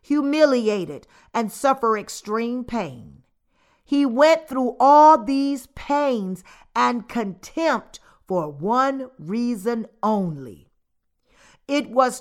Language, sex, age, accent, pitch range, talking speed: English, female, 50-69, American, 190-270 Hz, 95 wpm